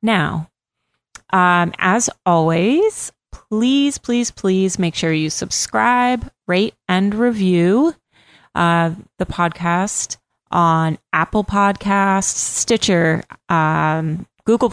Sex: female